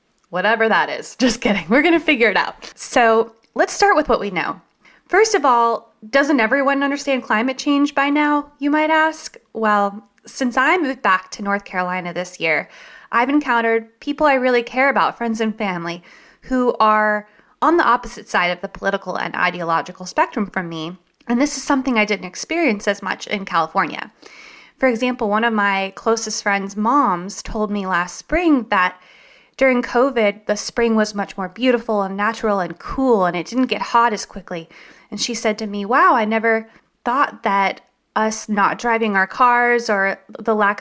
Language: English